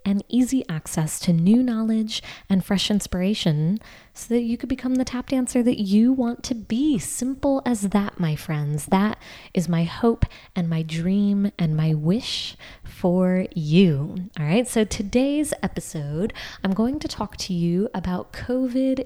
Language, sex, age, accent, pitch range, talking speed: English, female, 20-39, American, 175-235 Hz, 165 wpm